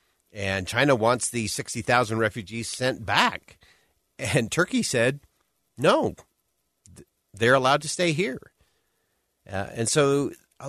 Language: English